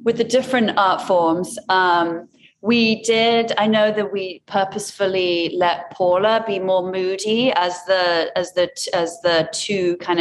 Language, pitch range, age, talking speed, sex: English, 150-180 Hz, 30-49, 155 wpm, female